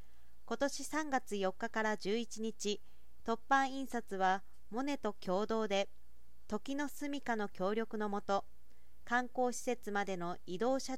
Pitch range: 195-255 Hz